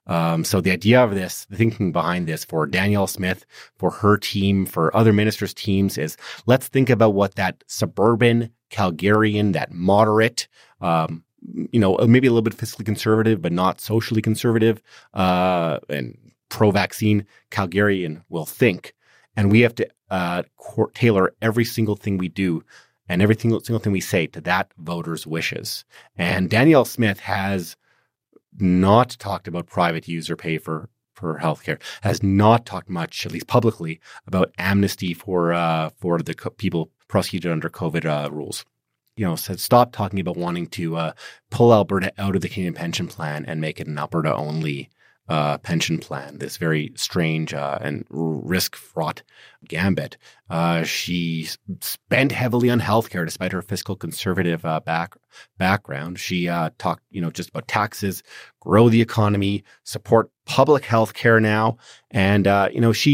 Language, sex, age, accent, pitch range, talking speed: English, male, 30-49, American, 85-110 Hz, 165 wpm